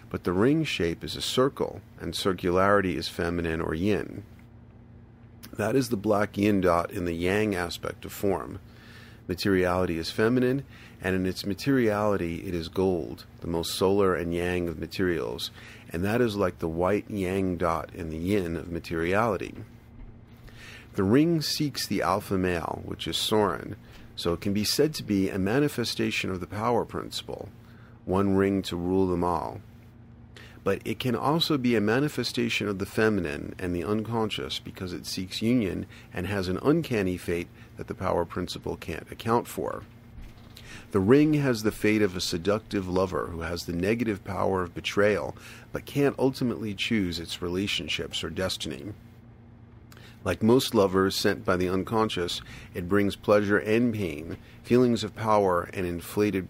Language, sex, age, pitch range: English, male, 40-59, 90-115 Hz